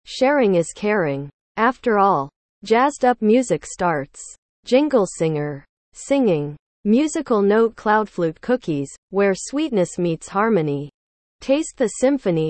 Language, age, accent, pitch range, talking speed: English, 40-59, American, 165-235 Hz, 110 wpm